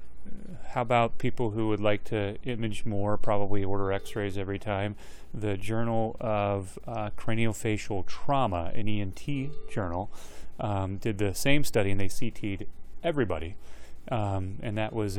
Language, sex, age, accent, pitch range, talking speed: English, male, 30-49, American, 100-115 Hz, 140 wpm